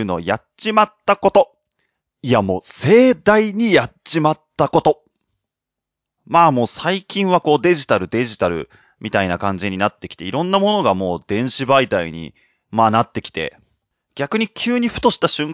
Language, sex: Japanese, male